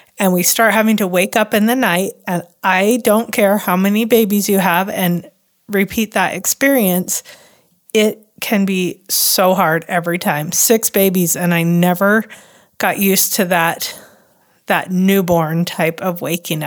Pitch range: 180-230 Hz